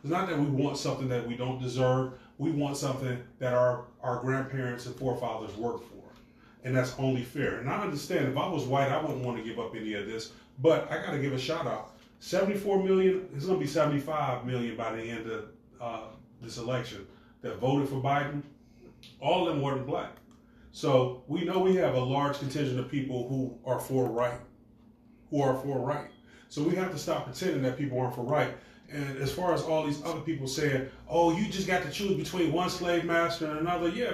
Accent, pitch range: American, 125-160 Hz